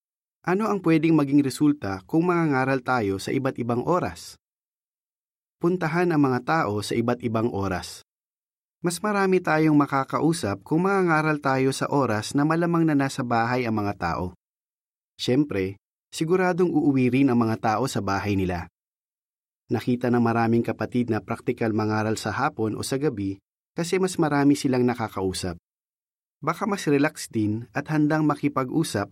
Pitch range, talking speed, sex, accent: 110-150 Hz, 145 wpm, male, native